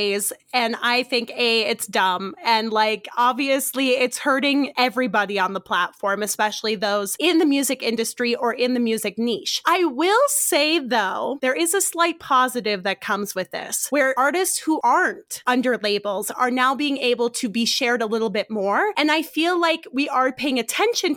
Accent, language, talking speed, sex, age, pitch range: American, English, 180 wpm, female, 20-39, 225-285 Hz